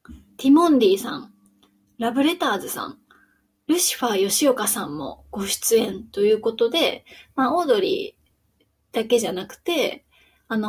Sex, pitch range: female, 215-320 Hz